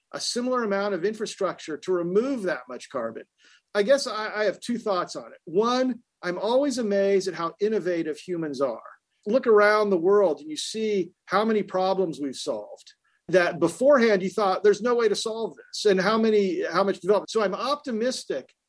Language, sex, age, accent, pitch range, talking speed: English, male, 40-59, American, 175-220 Hz, 190 wpm